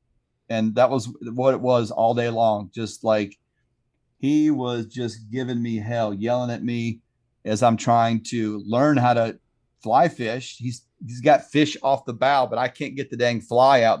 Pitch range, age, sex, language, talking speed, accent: 115-135 Hz, 40-59, male, English, 190 wpm, American